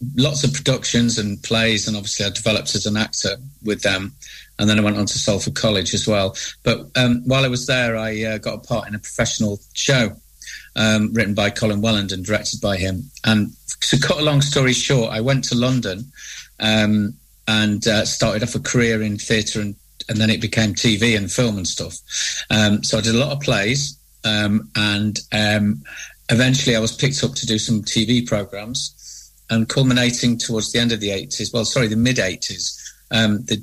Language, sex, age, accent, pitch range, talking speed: English, male, 40-59, British, 105-125 Hz, 200 wpm